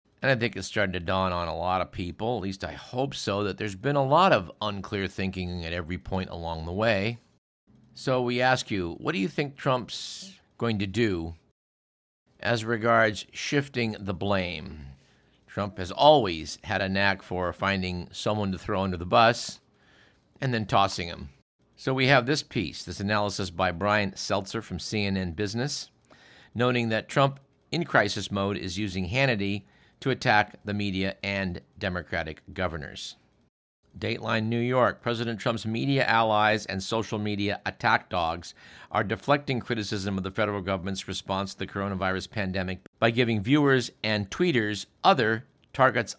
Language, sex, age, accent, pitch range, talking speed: English, male, 50-69, American, 95-120 Hz, 165 wpm